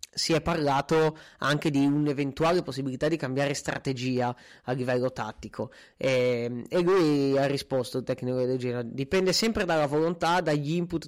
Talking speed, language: 150 wpm, Italian